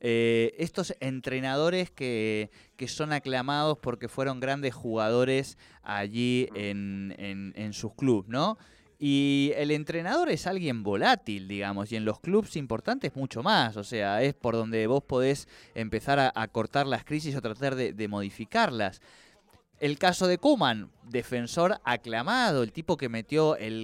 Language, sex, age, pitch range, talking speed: Spanish, male, 20-39, 105-140 Hz, 155 wpm